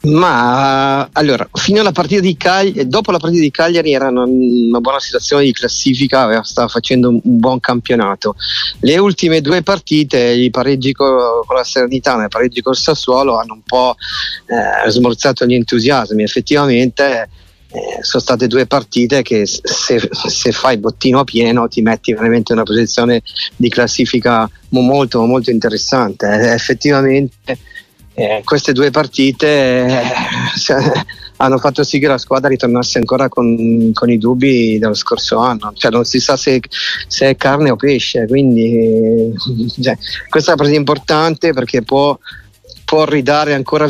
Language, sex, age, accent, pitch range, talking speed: Italian, male, 40-59, native, 115-140 Hz, 155 wpm